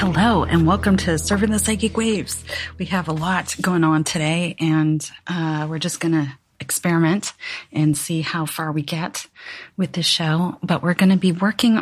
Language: English